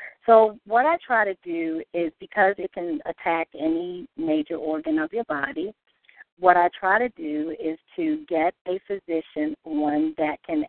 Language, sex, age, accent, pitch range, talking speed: English, female, 50-69, American, 155-205 Hz, 170 wpm